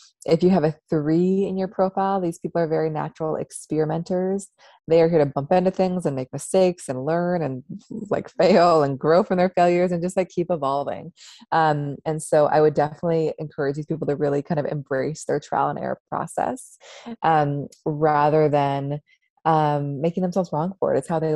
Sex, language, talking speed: female, English, 195 wpm